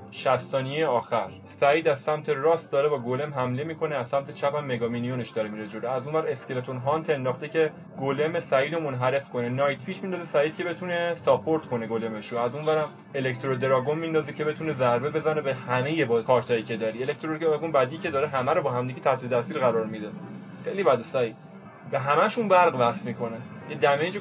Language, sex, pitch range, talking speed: Persian, male, 125-165 Hz, 185 wpm